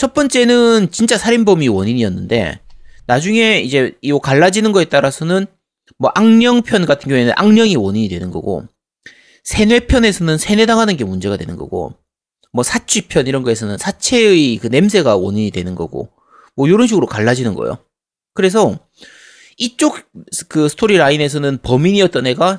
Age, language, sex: 30-49, Korean, male